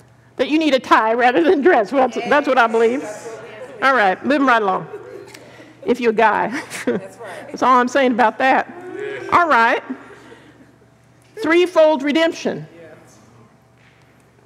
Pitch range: 210-275 Hz